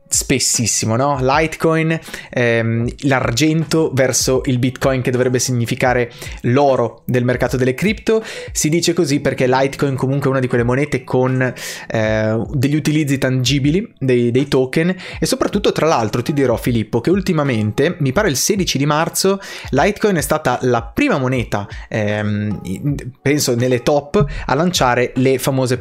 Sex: male